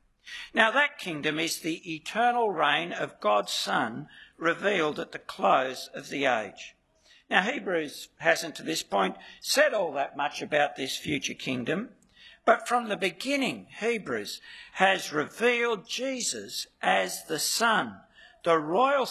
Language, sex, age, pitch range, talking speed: English, male, 60-79, 170-255 Hz, 140 wpm